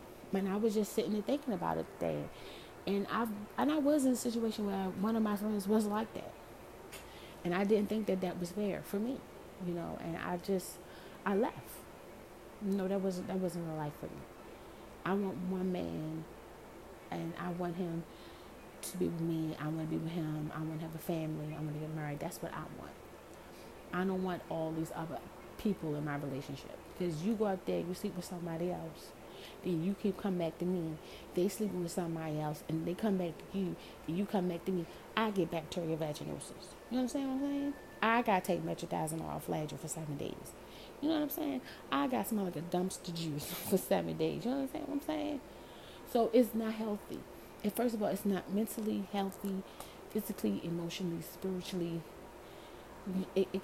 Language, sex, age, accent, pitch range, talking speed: English, female, 30-49, American, 165-215 Hz, 205 wpm